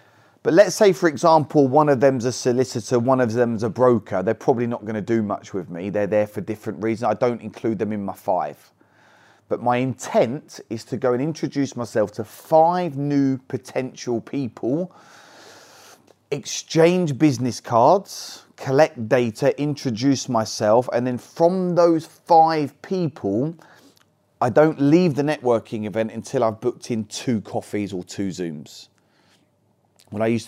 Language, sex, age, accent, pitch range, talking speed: English, male, 30-49, British, 100-130 Hz, 160 wpm